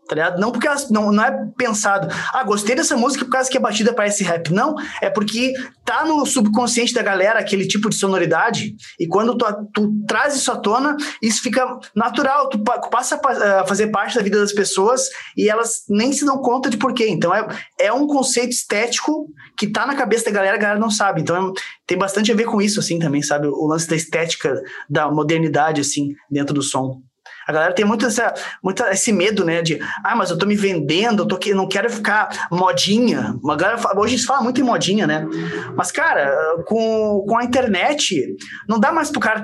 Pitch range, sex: 190-260 Hz, male